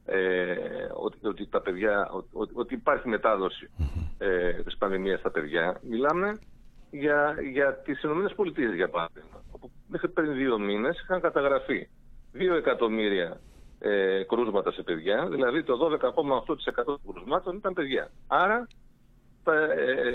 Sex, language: male, Greek